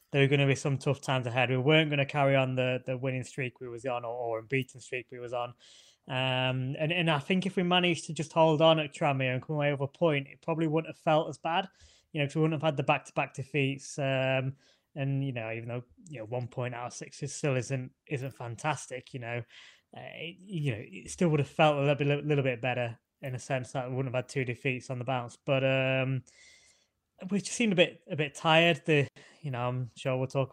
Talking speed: 255 wpm